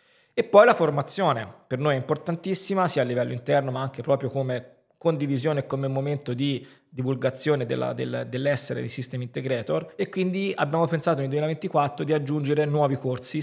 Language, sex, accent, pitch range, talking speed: Italian, male, native, 125-160 Hz, 170 wpm